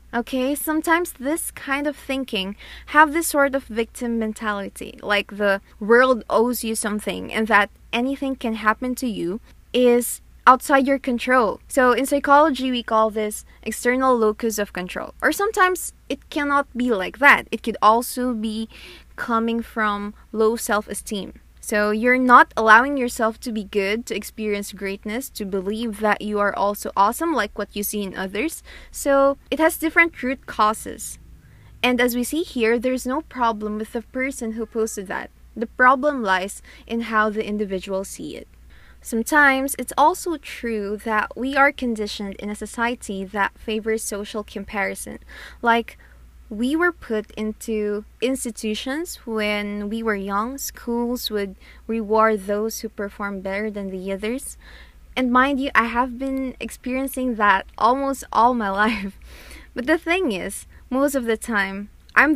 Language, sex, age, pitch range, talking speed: English, female, 20-39, 210-260 Hz, 155 wpm